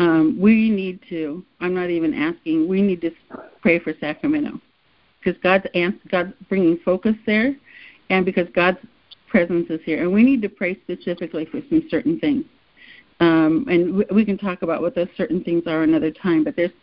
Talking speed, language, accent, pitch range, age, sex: 190 wpm, English, American, 170-225 Hz, 60-79, female